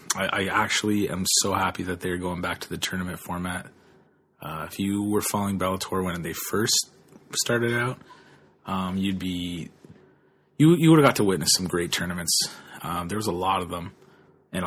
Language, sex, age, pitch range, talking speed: English, male, 30-49, 90-105 Hz, 185 wpm